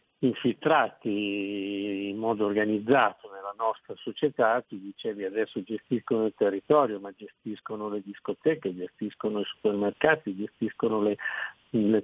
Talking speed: 115 wpm